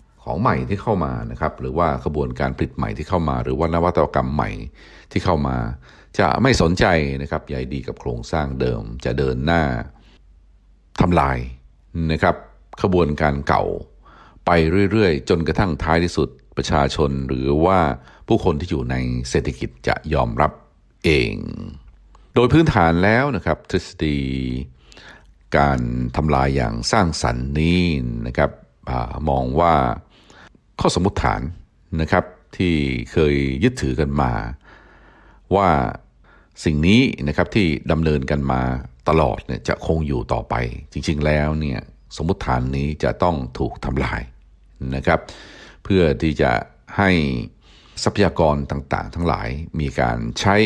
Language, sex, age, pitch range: Thai, male, 60-79, 65-85 Hz